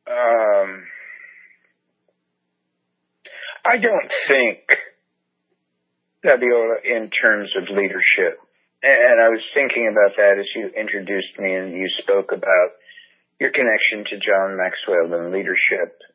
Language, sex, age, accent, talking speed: English, male, 50-69, American, 110 wpm